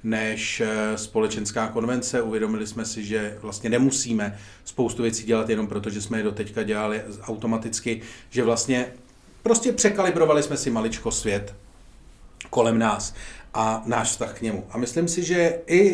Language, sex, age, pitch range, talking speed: Czech, male, 40-59, 100-115 Hz, 150 wpm